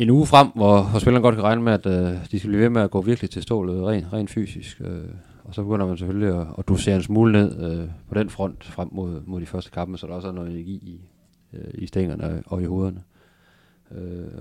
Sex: male